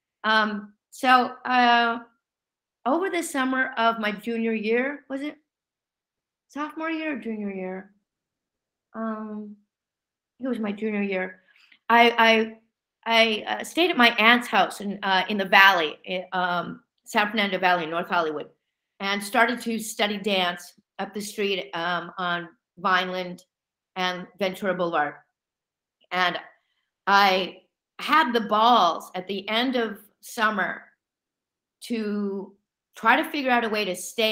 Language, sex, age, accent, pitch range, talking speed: English, female, 50-69, American, 180-225 Hz, 130 wpm